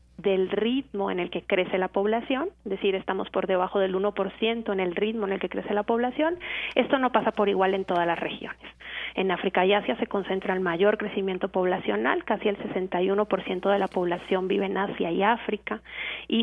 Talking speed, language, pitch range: 200 wpm, Spanish, 190-220 Hz